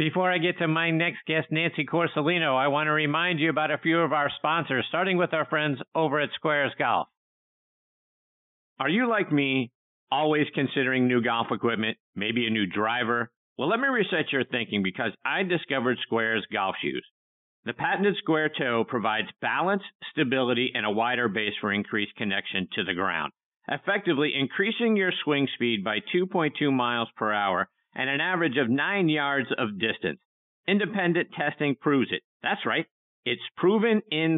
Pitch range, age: 120-170 Hz, 50-69